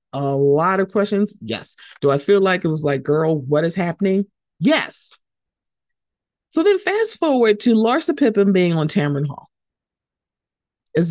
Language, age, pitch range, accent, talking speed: English, 30-49, 145-205 Hz, American, 155 wpm